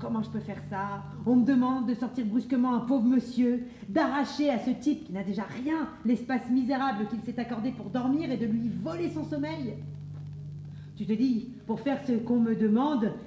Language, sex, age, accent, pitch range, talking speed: French, female, 40-59, French, 180-250 Hz, 200 wpm